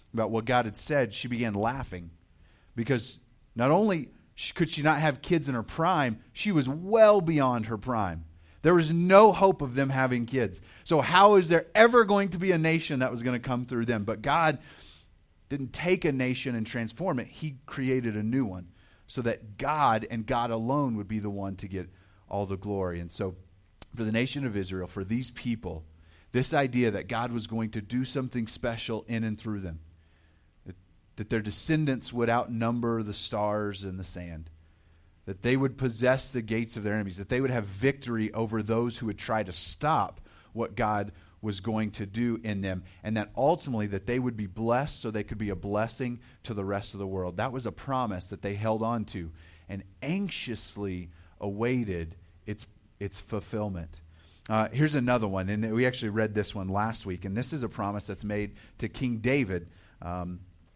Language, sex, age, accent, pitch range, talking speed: English, male, 30-49, American, 100-125 Hz, 200 wpm